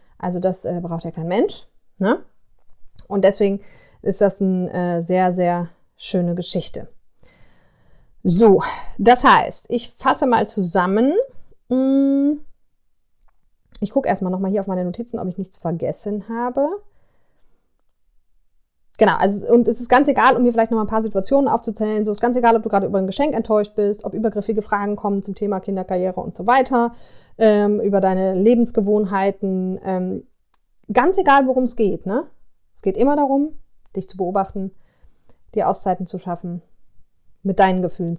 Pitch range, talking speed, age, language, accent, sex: 195-255 Hz, 155 wpm, 30-49, German, German, female